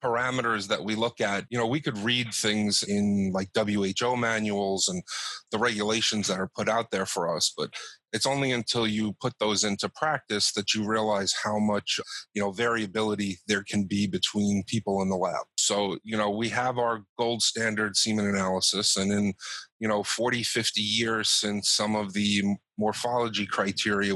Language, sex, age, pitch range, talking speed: English, male, 30-49, 100-115 Hz, 180 wpm